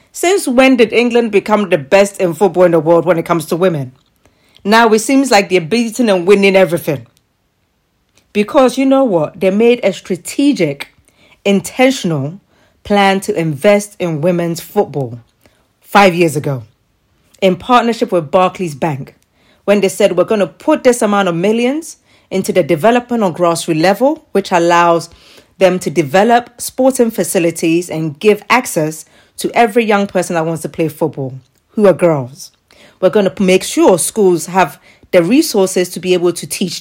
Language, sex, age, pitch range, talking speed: English, female, 40-59, 160-215 Hz, 165 wpm